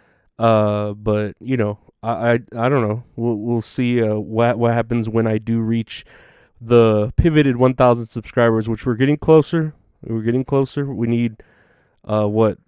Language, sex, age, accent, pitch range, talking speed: English, male, 20-39, American, 110-130 Hz, 165 wpm